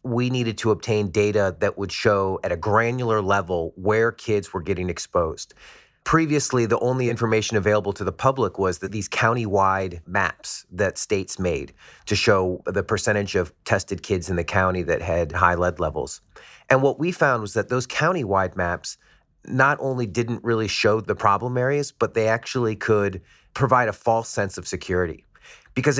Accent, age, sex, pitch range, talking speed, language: American, 30-49, male, 95-120 Hz, 175 wpm, English